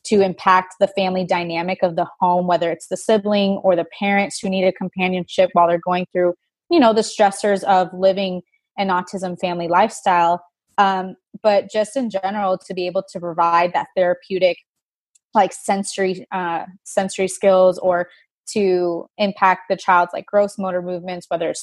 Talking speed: 170 wpm